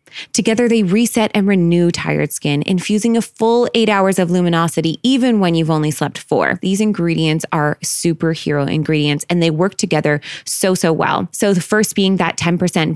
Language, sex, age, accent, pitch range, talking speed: English, female, 20-39, American, 160-205 Hz, 175 wpm